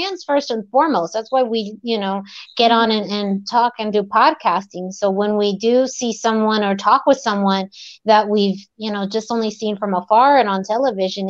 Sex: female